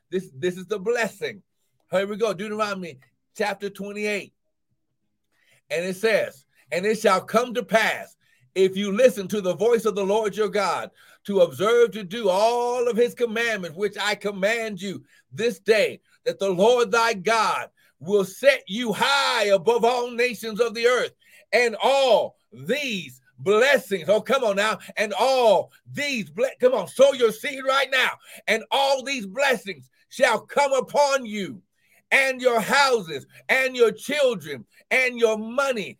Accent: American